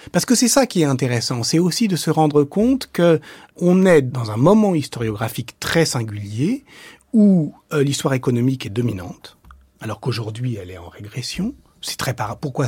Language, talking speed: French, 175 wpm